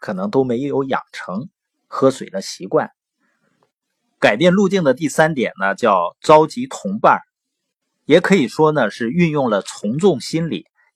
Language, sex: Chinese, male